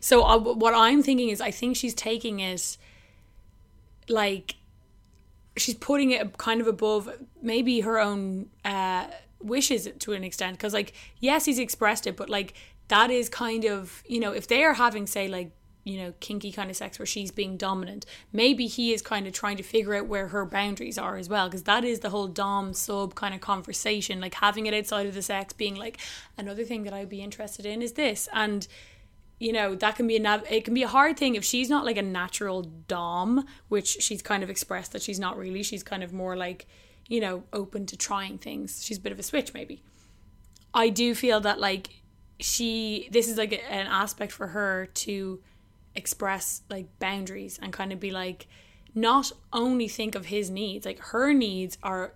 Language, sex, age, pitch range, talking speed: English, female, 20-39, 190-225 Hz, 205 wpm